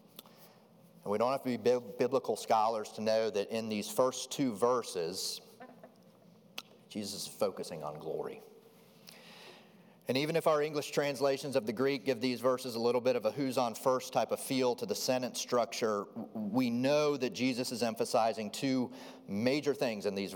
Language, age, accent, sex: English, 30-49, American, male